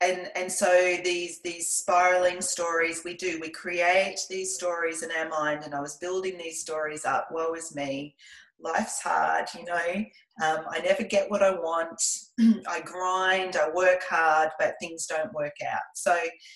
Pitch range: 170-215 Hz